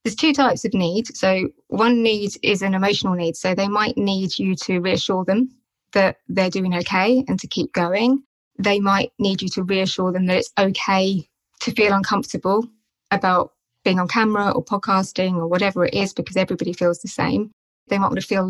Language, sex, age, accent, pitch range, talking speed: English, female, 20-39, British, 185-220 Hz, 200 wpm